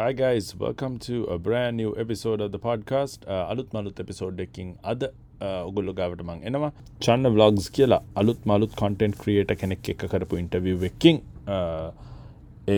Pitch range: 90-115 Hz